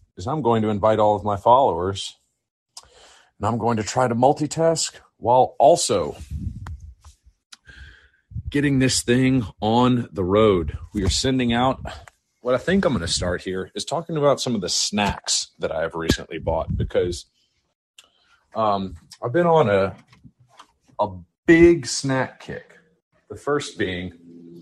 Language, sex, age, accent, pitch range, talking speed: English, male, 40-59, American, 95-130 Hz, 150 wpm